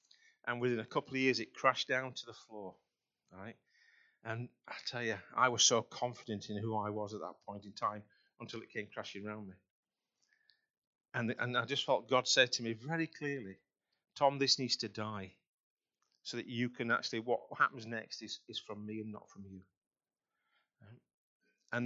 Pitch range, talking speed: 110-155 Hz, 185 wpm